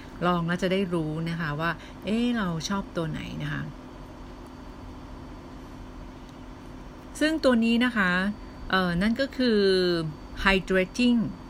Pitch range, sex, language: 155-200 Hz, female, Thai